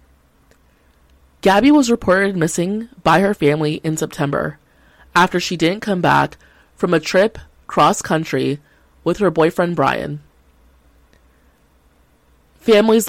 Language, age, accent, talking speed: English, 20-39, American, 105 wpm